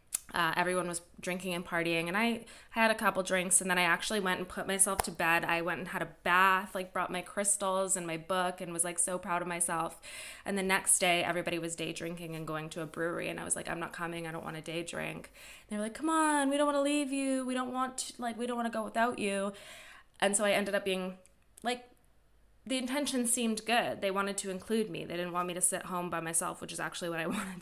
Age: 20-39